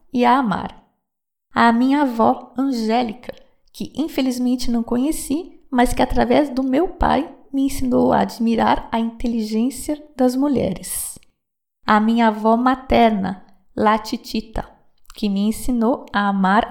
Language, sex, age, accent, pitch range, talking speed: Portuguese, female, 20-39, Brazilian, 215-265 Hz, 125 wpm